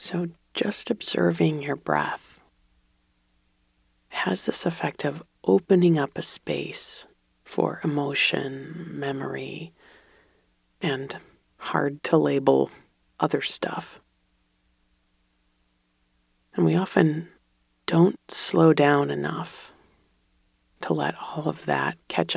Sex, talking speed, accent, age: female, 95 wpm, American, 40-59